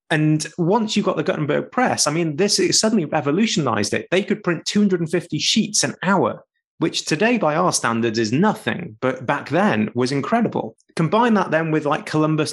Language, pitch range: English, 125-165 Hz